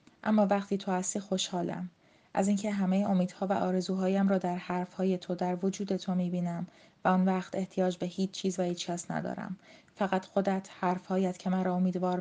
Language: Persian